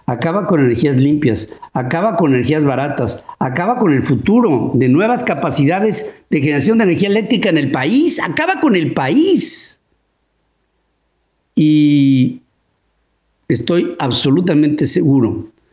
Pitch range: 135-215 Hz